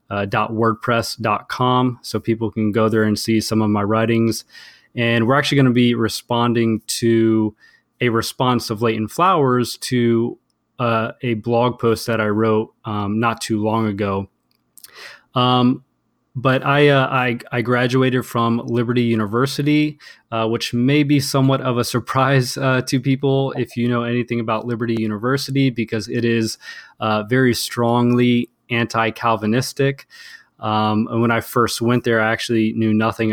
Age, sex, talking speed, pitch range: 20-39, male, 155 wpm, 110-125 Hz